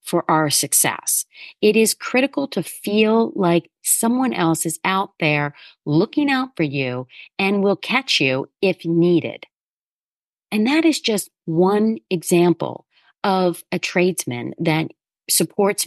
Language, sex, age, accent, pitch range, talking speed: English, female, 40-59, American, 180-255 Hz, 130 wpm